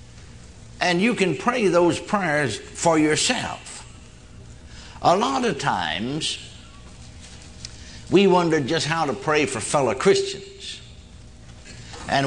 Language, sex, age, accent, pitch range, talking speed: English, male, 60-79, American, 120-165 Hz, 110 wpm